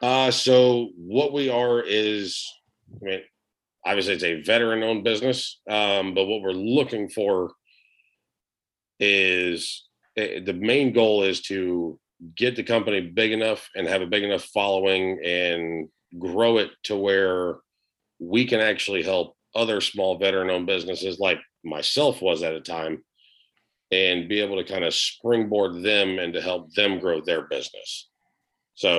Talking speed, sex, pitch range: 155 wpm, male, 90-110 Hz